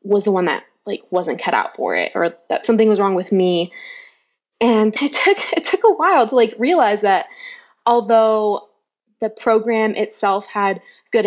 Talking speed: 180 wpm